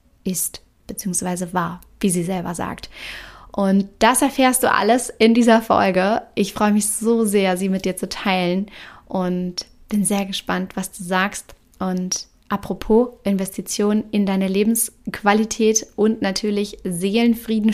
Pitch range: 190-220 Hz